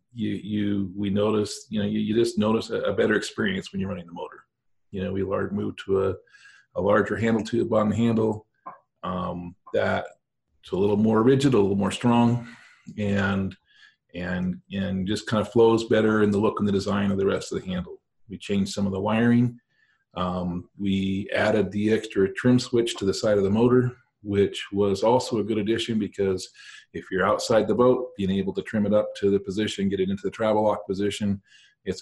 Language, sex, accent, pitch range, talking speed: English, male, American, 95-115 Hz, 205 wpm